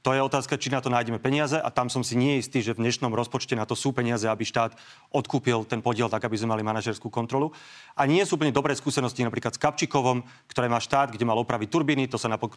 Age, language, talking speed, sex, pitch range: 30-49, Slovak, 250 wpm, male, 120-140 Hz